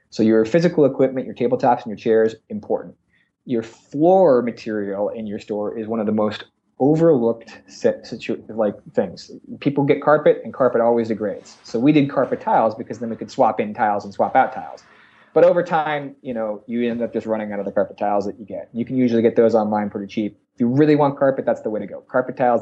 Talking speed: 230 wpm